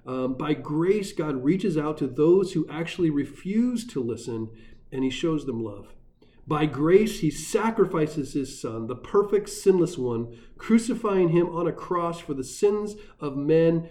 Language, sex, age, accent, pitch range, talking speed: English, male, 40-59, American, 140-190 Hz, 165 wpm